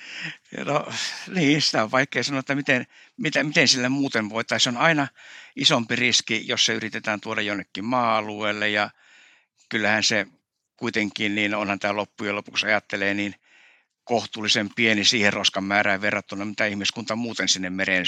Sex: male